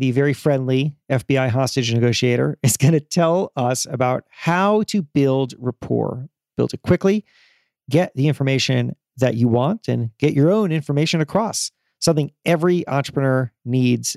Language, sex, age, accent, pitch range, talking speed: English, male, 40-59, American, 130-185 Hz, 150 wpm